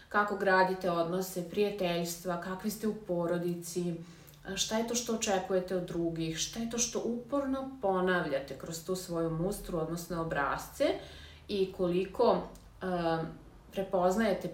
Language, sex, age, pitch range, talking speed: English, female, 30-49, 175-210 Hz, 125 wpm